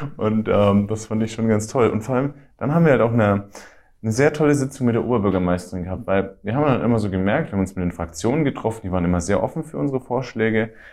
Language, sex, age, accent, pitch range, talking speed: German, male, 30-49, German, 90-110 Hz, 260 wpm